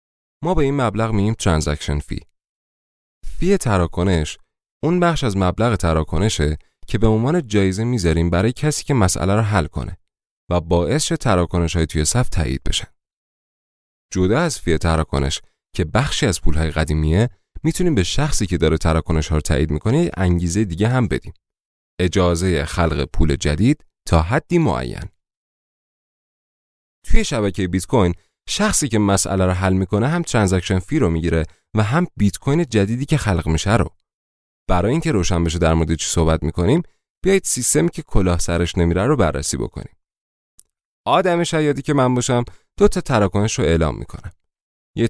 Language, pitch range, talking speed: Persian, 80-125 Hz, 155 wpm